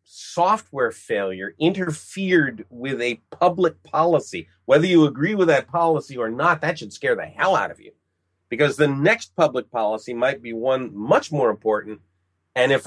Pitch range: 105-155 Hz